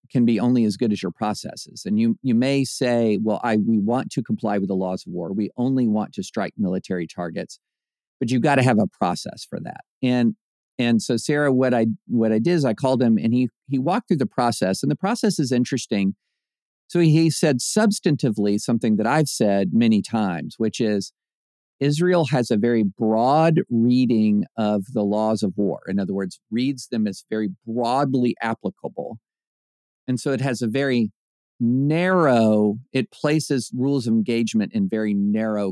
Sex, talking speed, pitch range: male, 190 wpm, 105-135 Hz